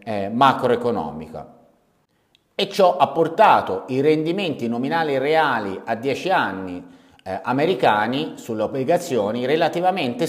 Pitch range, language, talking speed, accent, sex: 115-160 Hz, Italian, 100 wpm, native, male